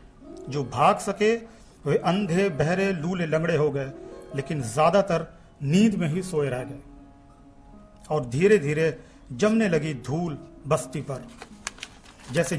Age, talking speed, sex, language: 40-59, 130 wpm, male, Hindi